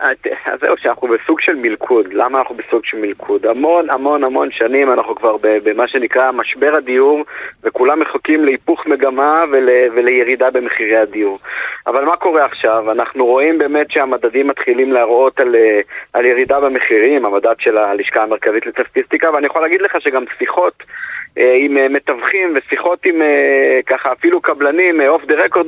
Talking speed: 145 wpm